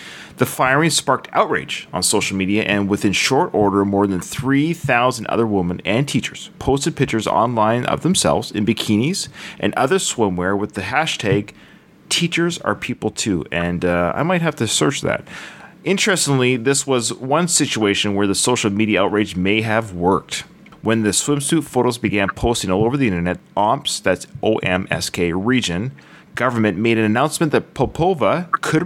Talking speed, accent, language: 160 wpm, American, English